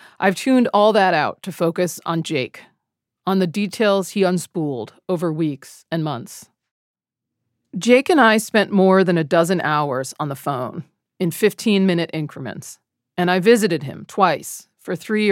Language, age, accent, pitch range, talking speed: English, 40-59, American, 155-200 Hz, 155 wpm